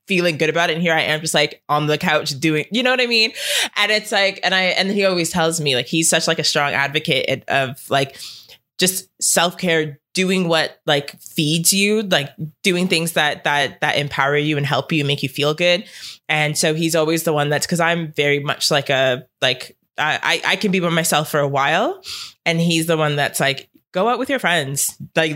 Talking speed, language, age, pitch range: 225 wpm, English, 20-39, 145-180 Hz